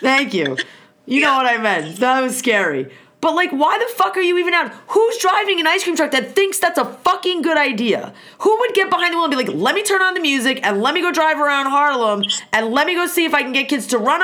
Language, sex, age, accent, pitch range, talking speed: English, female, 30-49, American, 220-315 Hz, 280 wpm